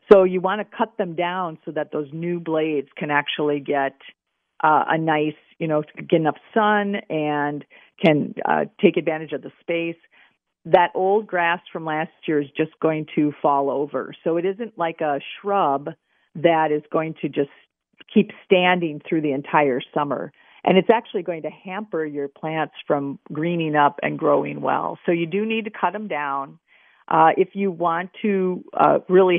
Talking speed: 180 wpm